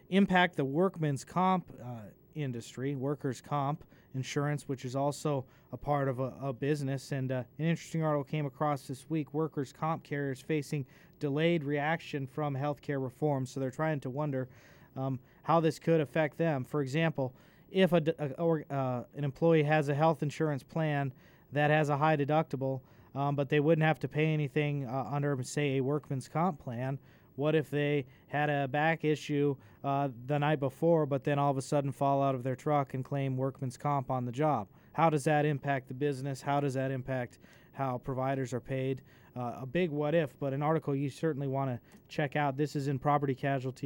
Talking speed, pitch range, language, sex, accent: 195 wpm, 130-155 Hz, English, male, American